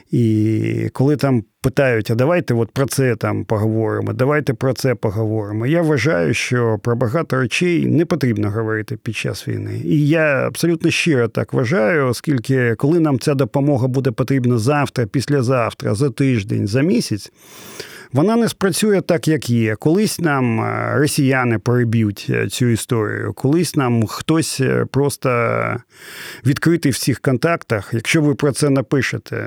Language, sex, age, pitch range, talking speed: Ukrainian, male, 40-59, 115-155 Hz, 145 wpm